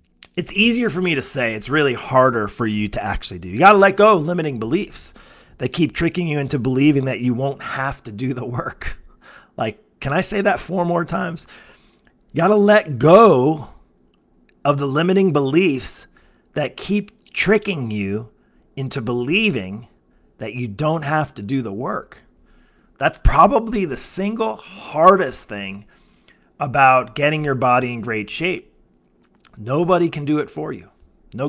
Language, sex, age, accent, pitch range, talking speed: English, male, 30-49, American, 125-180 Hz, 165 wpm